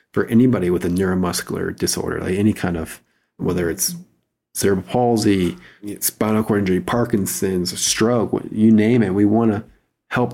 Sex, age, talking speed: male, 40-59, 150 wpm